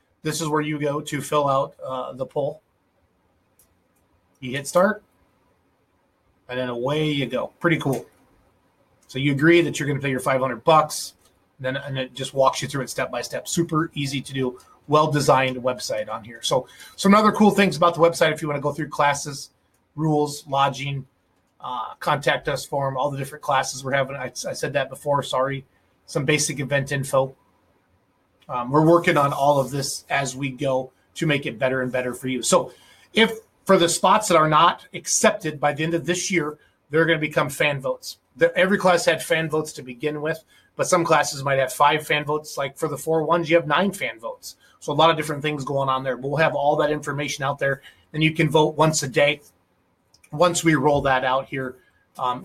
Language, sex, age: English, male, 30-49